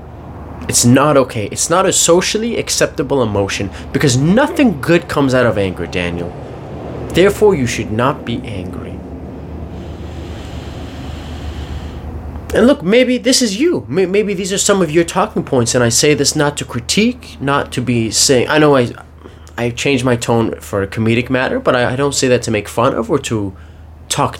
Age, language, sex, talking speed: 20-39, English, male, 175 wpm